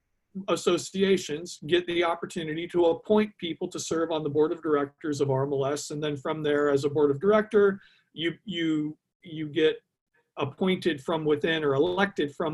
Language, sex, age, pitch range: English, male, 40-59, 145-195 Hz